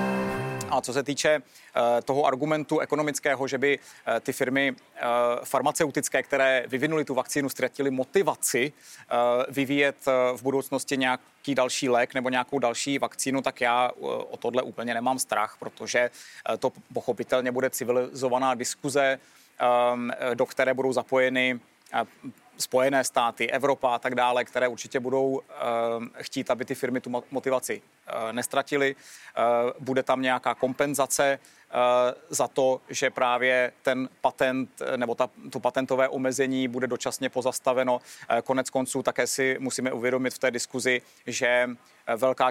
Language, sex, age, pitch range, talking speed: Czech, male, 30-49, 125-135 Hz, 125 wpm